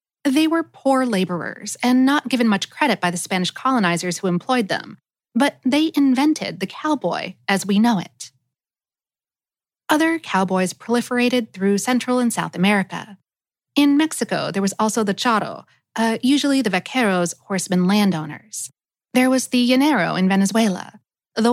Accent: American